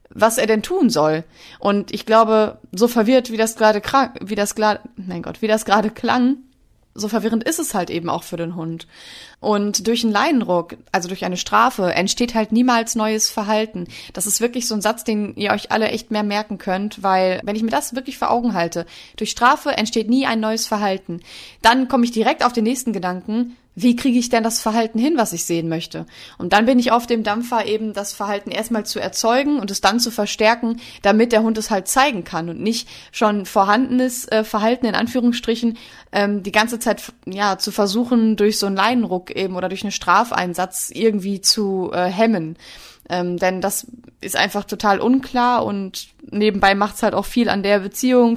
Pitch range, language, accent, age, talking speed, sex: 200-235 Hz, German, German, 20-39, 205 wpm, female